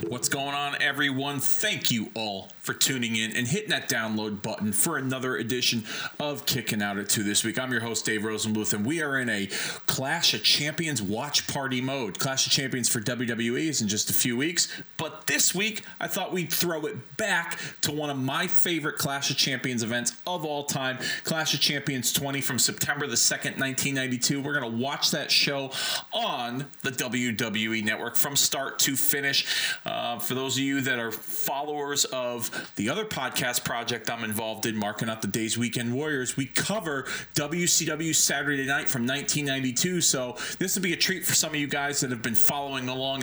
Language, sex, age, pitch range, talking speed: English, male, 40-59, 120-145 Hz, 195 wpm